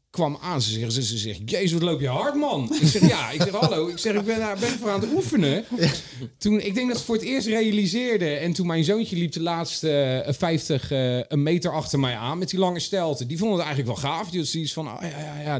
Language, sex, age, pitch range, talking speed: Dutch, male, 40-59, 110-150 Hz, 260 wpm